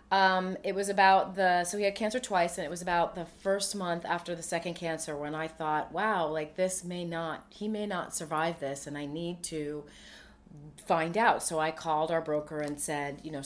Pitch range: 155-195 Hz